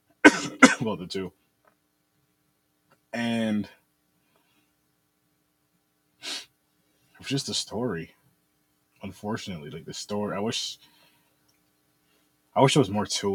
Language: English